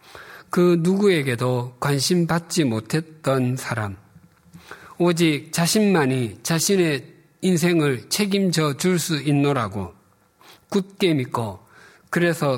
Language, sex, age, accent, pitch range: Korean, male, 50-69, native, 105-150 Hz